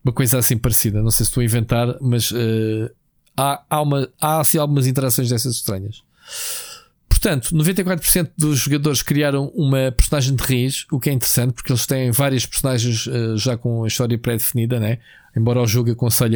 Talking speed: 185 wpm